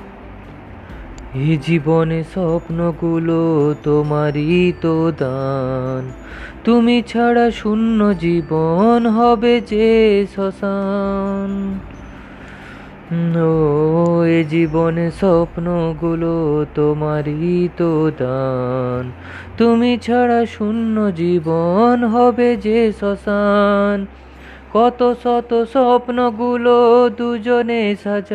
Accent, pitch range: native, 165-230 Hz